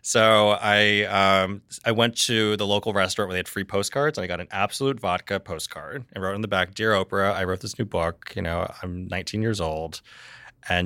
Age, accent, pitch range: 30-49, American, 95-115 Hz